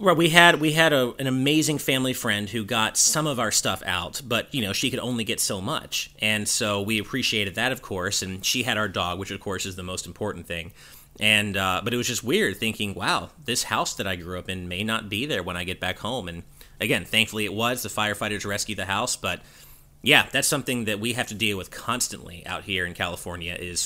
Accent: American